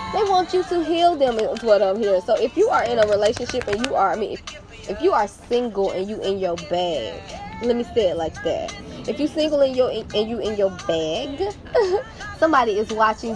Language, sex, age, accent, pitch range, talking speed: English, female, 10-29, American, 205-275 Hz, 225 wpm